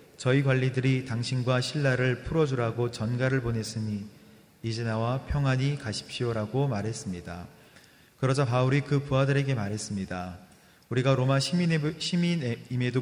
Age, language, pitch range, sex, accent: 30-49, Korean, 110-135 Hz, male, native